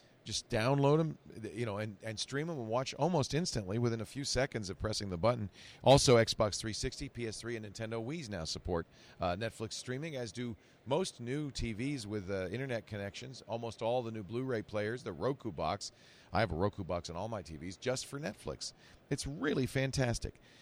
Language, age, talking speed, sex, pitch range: English, 40-59, 190 wpm, male, 105-135 Hz